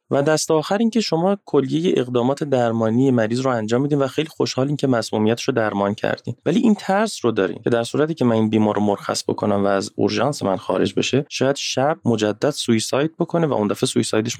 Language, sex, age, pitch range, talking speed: Persian, male, 20-39, 105-140 Hz, 205 wpm